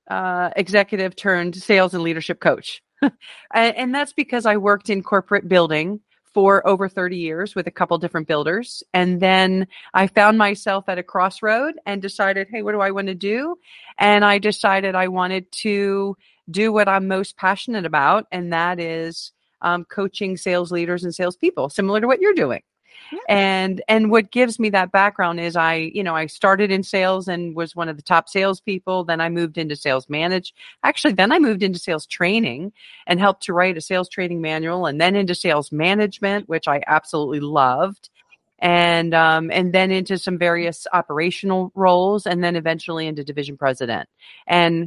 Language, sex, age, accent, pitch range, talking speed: English, female, 40-59, American, 170-205 Hz, 180 wpm